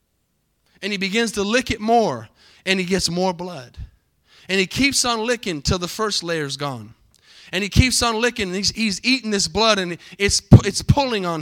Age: 30-49